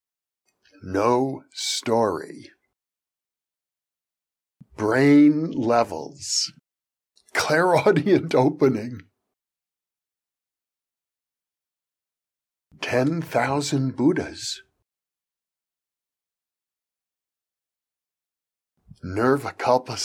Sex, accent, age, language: male, American, 60-79, English